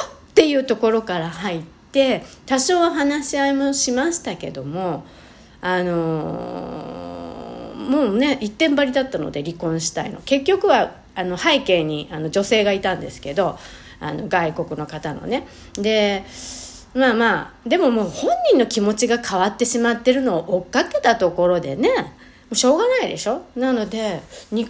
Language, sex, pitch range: Japanese, female, 175-280 Hz